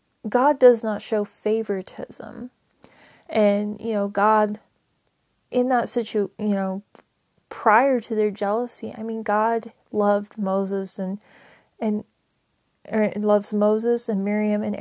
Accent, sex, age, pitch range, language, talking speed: American, female, 30-49, 205-225 Hz, English, 120 wpm